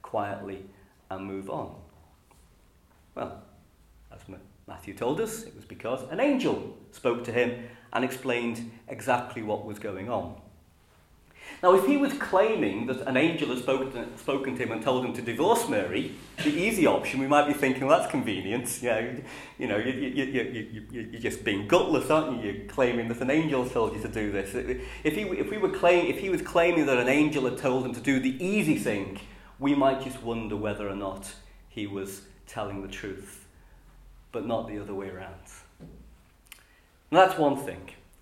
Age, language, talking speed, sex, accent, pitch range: 40-59, English, 185 wpm, male, British, 100-145 Hz